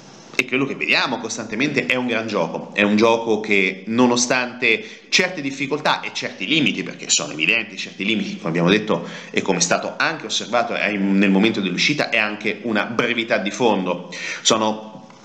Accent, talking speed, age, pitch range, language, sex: native, 170 wpm, 30-49, 105-130 Hz, Italian, male